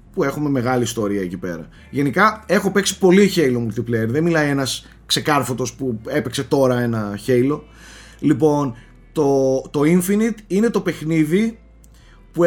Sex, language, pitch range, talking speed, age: male, Greek, 130-175 Hz, 140 wpm, 30-49